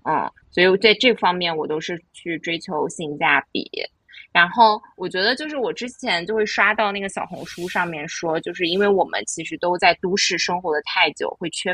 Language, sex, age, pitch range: Chinese, female, 20-39, 165-215 Hz